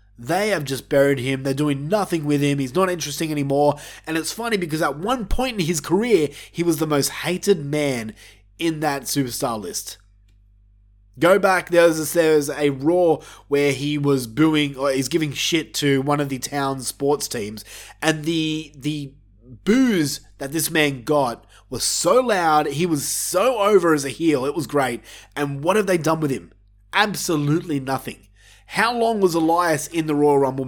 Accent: Australian